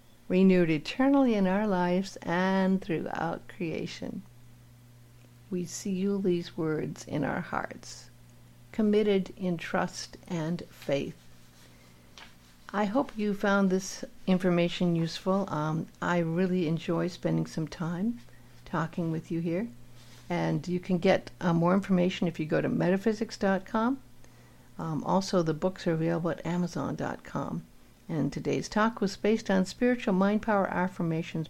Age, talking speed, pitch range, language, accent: 60-79, 130 wpm, 160-195 Hz, English, American